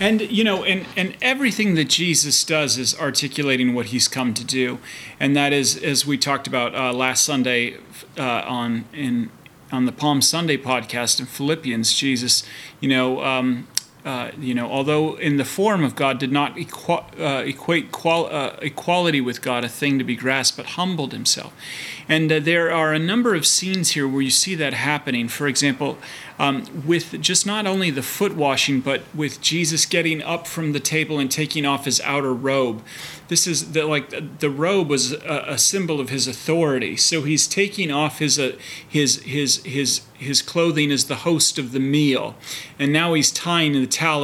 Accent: American